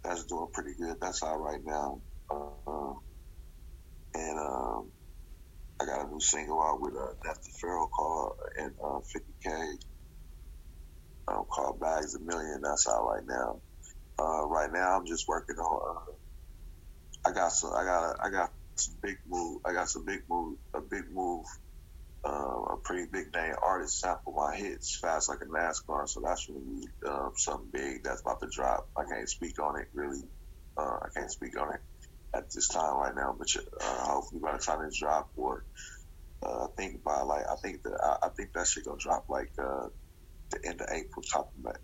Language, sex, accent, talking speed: English, male, American, 200 wpm